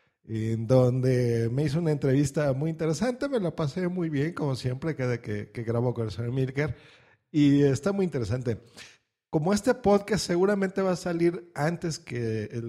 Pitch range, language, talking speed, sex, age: 120-165 Hz, Spanish, 180 wpm, male, 40-59